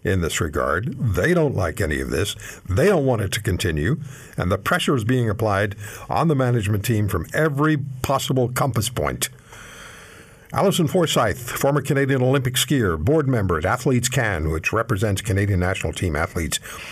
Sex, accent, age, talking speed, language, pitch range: male, American, 60-79, 165 wpm, English, 110-150 Hz